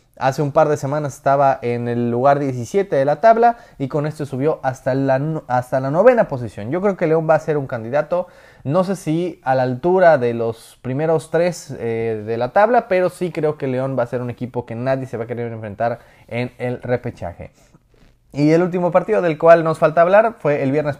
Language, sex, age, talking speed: Spanish, male, 20-39, 220 wpm